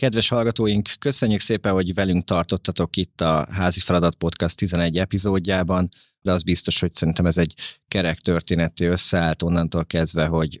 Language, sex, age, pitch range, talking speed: Hungarian, male, 30-49, 80-90 Hz, 155 wpm